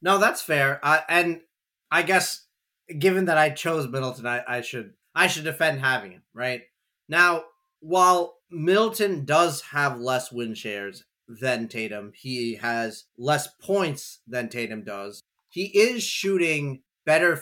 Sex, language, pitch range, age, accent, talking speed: male, English, 130-175 Hz, 30-49, American, 145 wpm